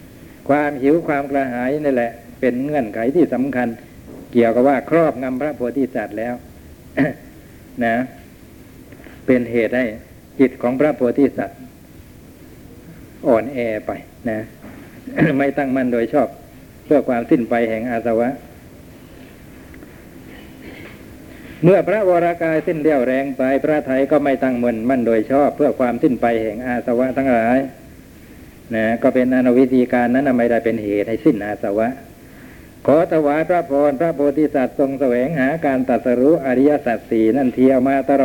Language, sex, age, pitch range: Thai, male, 60-79, 120-155 Hz